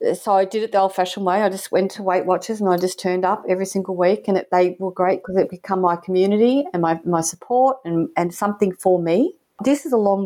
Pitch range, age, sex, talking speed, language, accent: 170-200 Hz, 40-59, female, 255 wpm, English, Australian